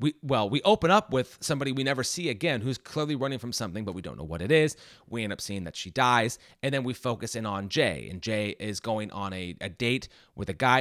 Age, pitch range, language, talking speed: 30-49, 110-145 Hz, English, 265 wpm